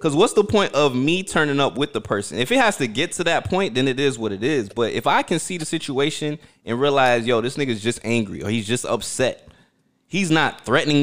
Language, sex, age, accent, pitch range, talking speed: English, male, 20-39, American, 115-150 Hz, 255 wpm